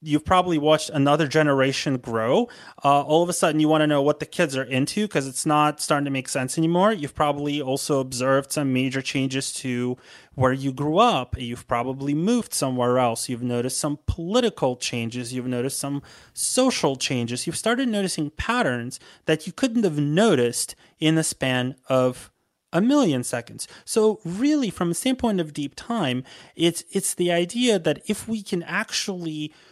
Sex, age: male, 30-49